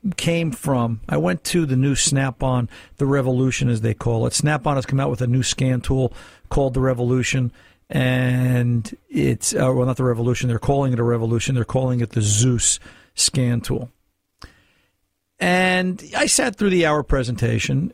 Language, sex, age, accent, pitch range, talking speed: English, male, 50-69, American, 125-160 Hz, 175 wpm